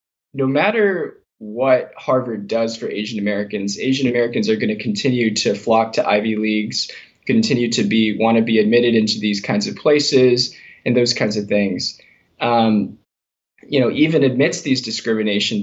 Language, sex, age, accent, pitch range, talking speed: English, male, 10-29, American, 105-130 Hz, 155 wpm